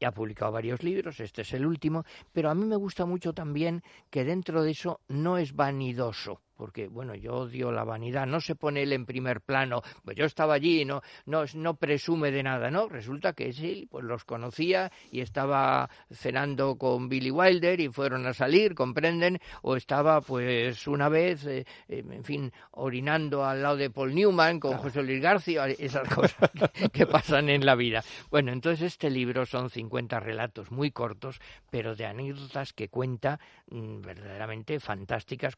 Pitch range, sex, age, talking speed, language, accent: 120-150 Hz, male, 50-69, 185 wpm, Spanish, Spanish